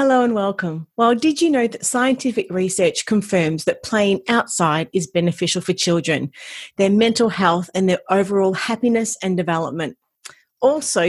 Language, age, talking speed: English, 40-59, 150 wpm